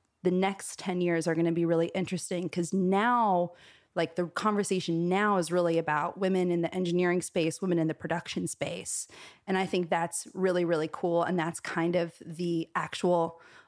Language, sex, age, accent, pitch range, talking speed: English, female, 20-39, American, 170-190 Hz, 185 wpm